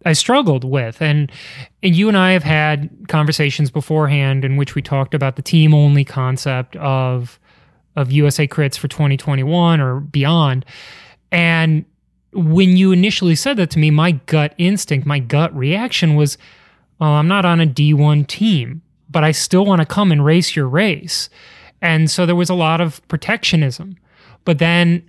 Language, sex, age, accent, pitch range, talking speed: English, male, 30-49, American, 145-175 Hz, 165 wpm